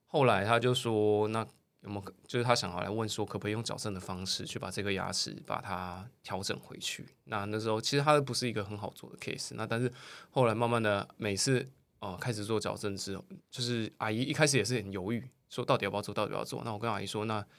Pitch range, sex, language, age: 105-130 Hz, male, Chinese, 20-39